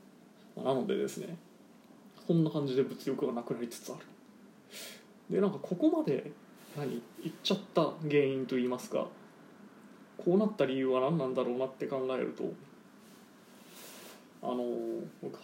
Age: 20-39